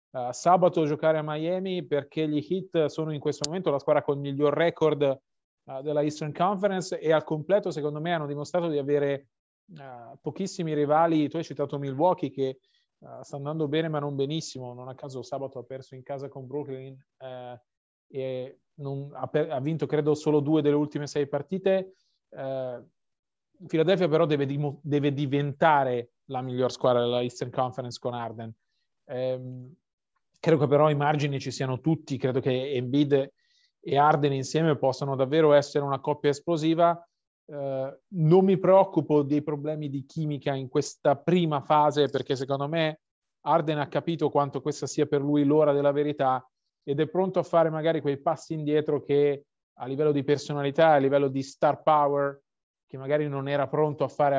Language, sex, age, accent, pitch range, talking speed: Italian, male, 30-49, native, 135-155 Hz, 165 wpm